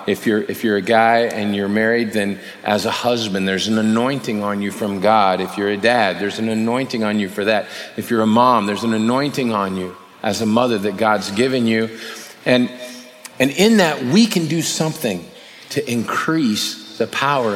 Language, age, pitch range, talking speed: English, 40-59, 110-155 Hz, 200 wpm